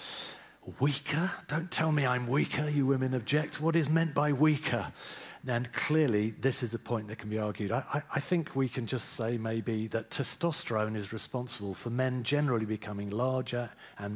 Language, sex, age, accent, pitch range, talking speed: English, male, 40-59, British, 105-135 Hz, 180 wpm